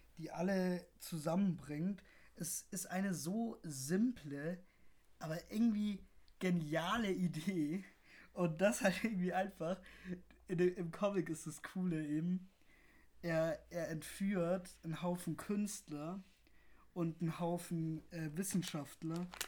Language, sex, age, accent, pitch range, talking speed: German, male, 20-39, German, 160-185 Hz, 105 wpm